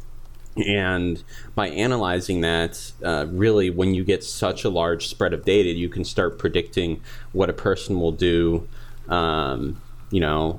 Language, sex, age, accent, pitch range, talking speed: English, male, 30-49, American, 80-100 Hz, 155 wpm